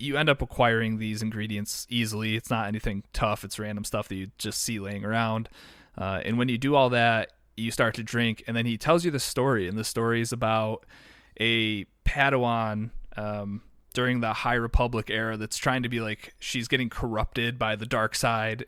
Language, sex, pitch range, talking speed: English, male, 110-125 Hz, 200 wpm